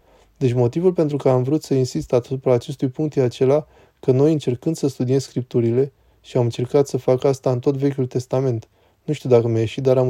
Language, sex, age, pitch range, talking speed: Romanian, male, 20-39, 120-140 Hz, 220 wpm